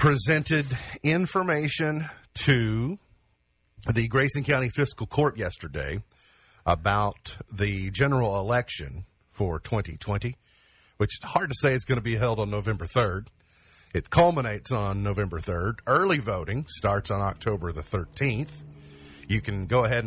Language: English